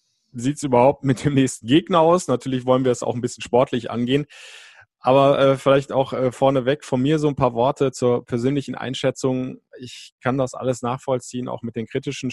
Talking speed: 200 wpm